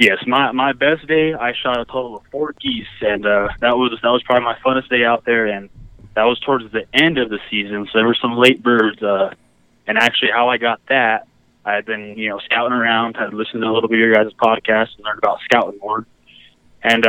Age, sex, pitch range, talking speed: 20-39, male, 110-125 Hz, 240 wpm